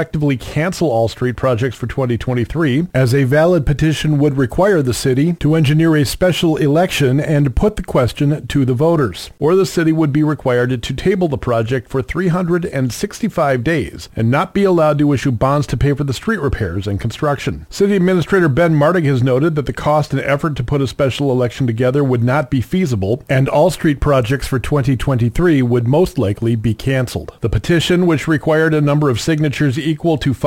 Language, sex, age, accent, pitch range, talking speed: English, male, 40-59, American, 130-160 Hz, 195 wpm